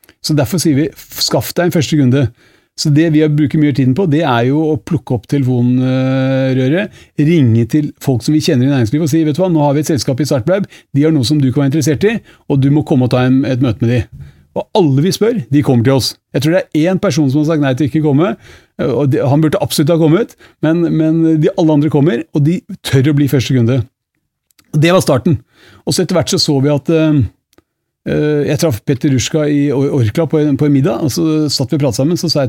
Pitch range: 135-155 Hz